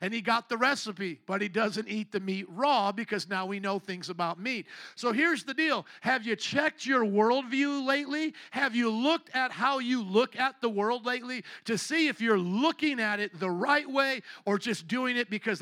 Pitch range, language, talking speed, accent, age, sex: 205-265 Hz, English, 210 wpm, American, 50-69, male